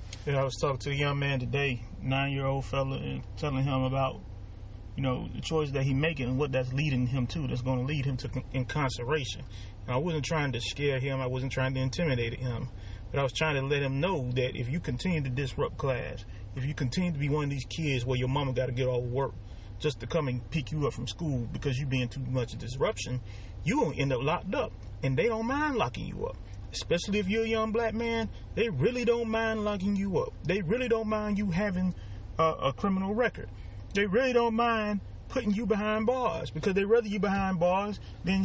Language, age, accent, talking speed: English, 30-49, American, 230 wpm